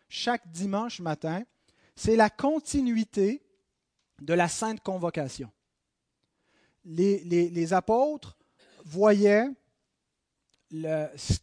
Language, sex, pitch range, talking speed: French, male, 175-230 Hz, 80 wpm